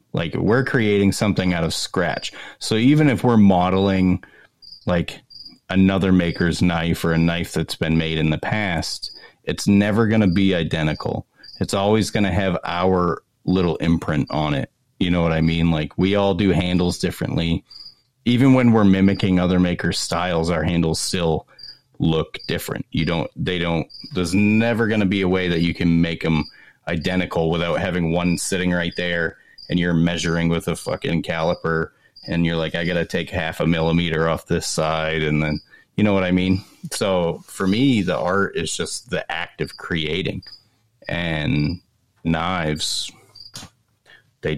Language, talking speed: English, 170 wpm